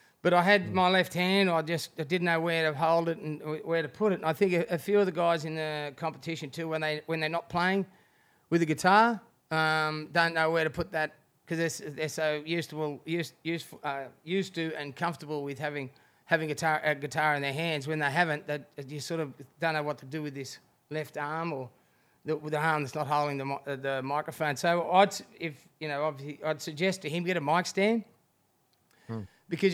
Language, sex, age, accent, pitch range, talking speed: English, male, 30-49, Australian, 150-170 Hz, 230 wpm